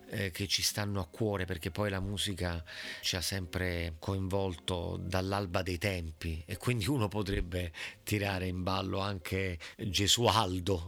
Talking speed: 140 wpm